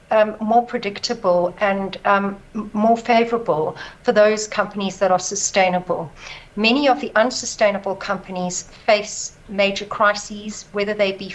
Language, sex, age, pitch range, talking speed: English, female, 60-79, 195-220 Hz, 125 wpm